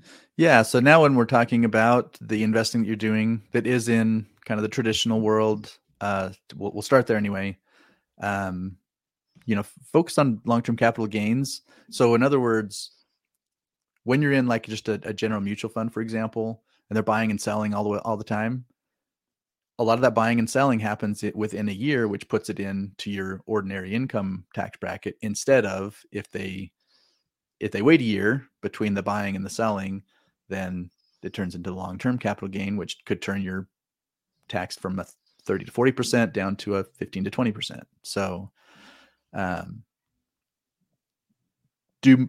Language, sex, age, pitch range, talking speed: English, male, 30-49, 100-120 Hz, 180 wpm